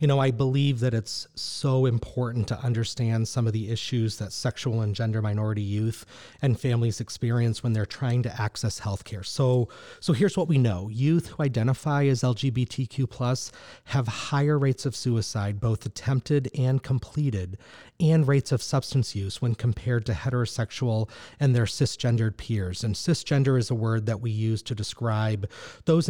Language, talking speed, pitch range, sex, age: English, 170 wpm, 110-135 Hz, male, 30-49